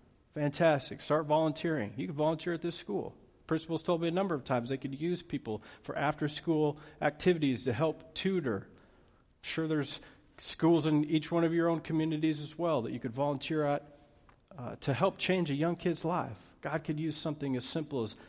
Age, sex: 40-59, male